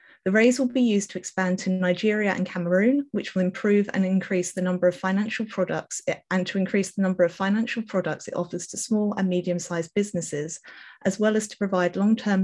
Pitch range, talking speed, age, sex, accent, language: 175-215 Hz, 205 wpm, 30-49, female, British, English